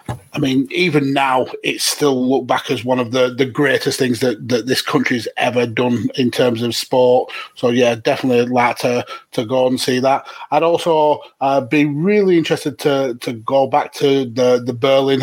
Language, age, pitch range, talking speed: English, 30-49, 125-145 Hz, 195 wpm